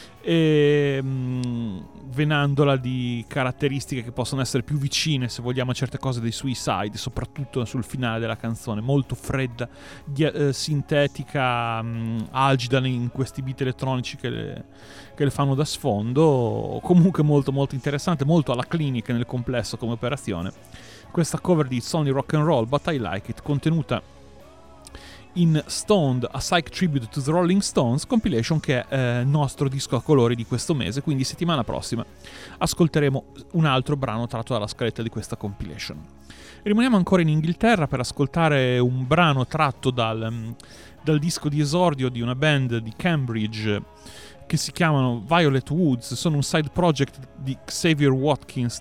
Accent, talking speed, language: Italian, 155 wpm, English